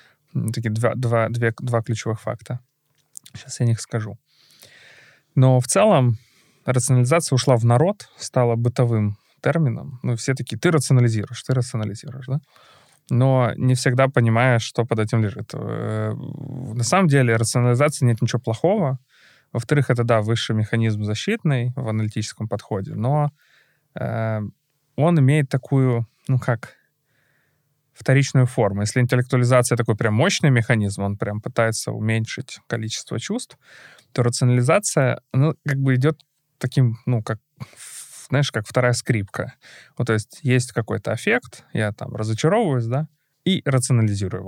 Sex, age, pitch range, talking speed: male, 20-39, 115-135 Hz, 130 wpm